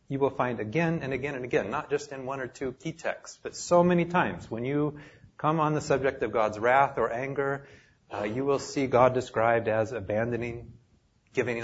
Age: 30-49